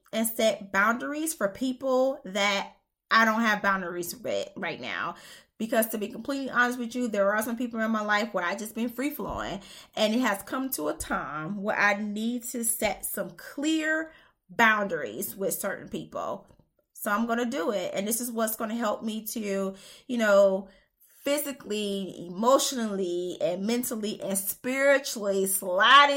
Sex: female